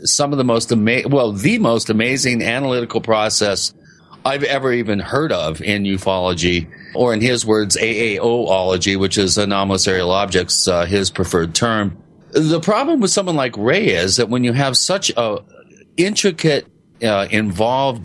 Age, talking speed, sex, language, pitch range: 40-59, 160 wpm, male, English, 110-155 Hz